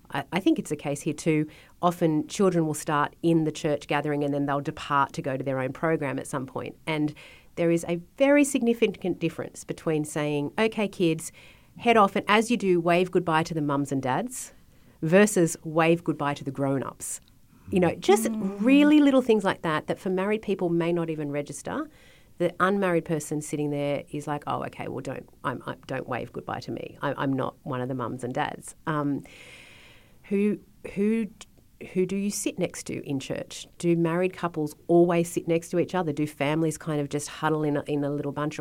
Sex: female